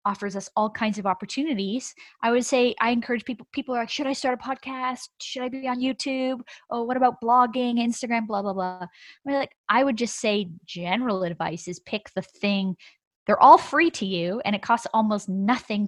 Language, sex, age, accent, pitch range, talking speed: English, female, 20-39, American, 185-235 Hz, 200 wpm